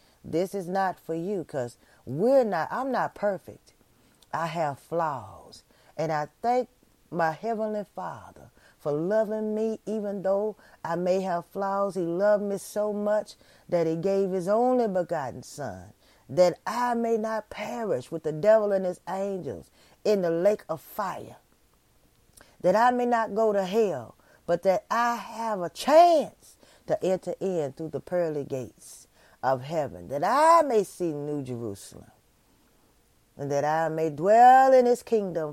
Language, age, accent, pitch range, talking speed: English, 40-59, American, 150-220 Hz, 155 wpm